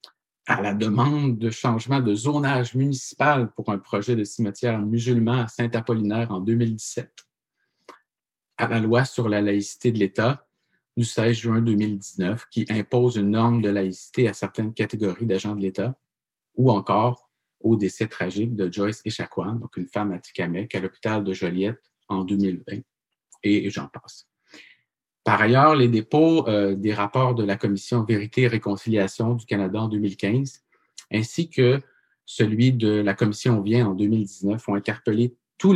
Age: 50-69